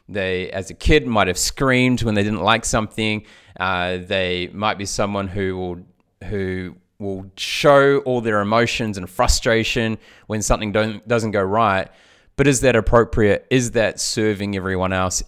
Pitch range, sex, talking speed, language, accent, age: 95-115 Hz, male, 165 wpm, English, Australian, 20-39